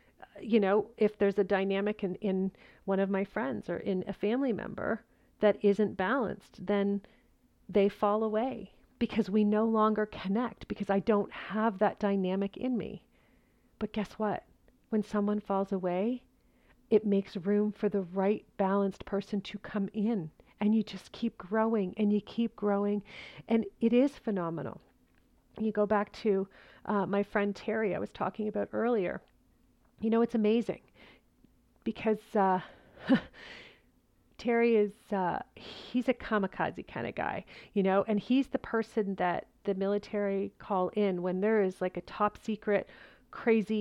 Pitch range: 195-220 Hz